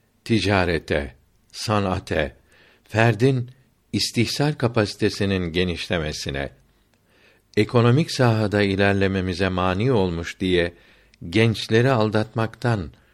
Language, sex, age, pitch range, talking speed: Turkish, male, 60-79, 95-120 Hz, 65 wpm